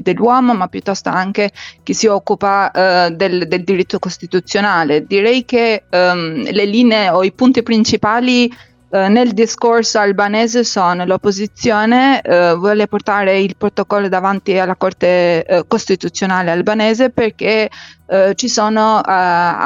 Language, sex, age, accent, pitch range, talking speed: Italian, female, 20-39, native, 185-220 Hz, 125 wpm